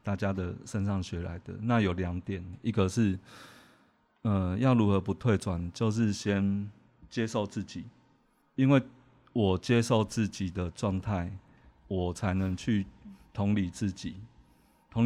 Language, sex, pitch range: Chinese, male, 95-115 Hz